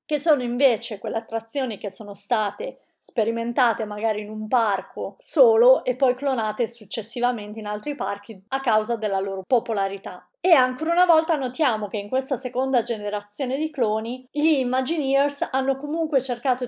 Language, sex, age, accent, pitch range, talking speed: Italian, female, 30-49, native, 205-250 Hz, 155 wpm